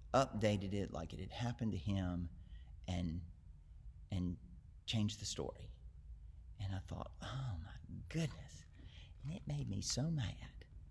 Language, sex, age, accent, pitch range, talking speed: English, male, 40-59, American, 90-125 Hz, 140 wpm